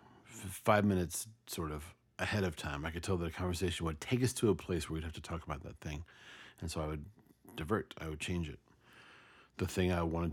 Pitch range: 80-95 Hz